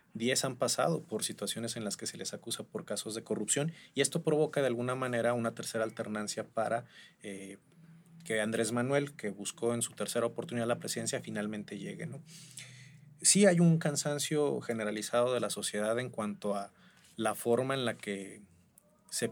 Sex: male